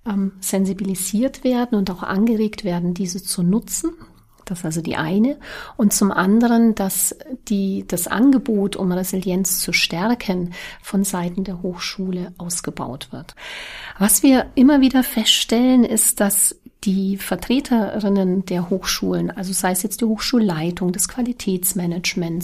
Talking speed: 135 wpm